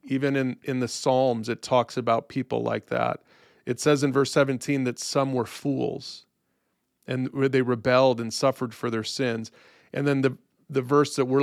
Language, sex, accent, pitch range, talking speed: English, male, American, 125-145 Hz, 185 wpm